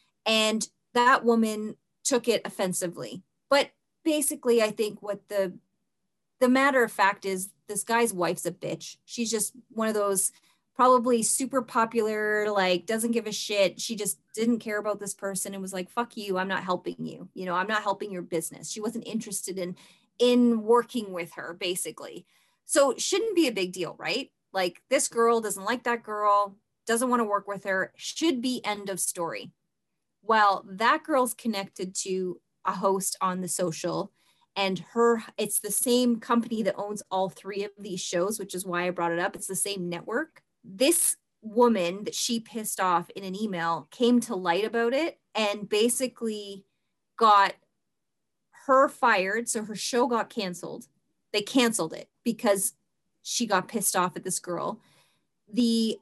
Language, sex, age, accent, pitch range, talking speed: English, female, 20-39, American, 185-235 Hz, 175 wpm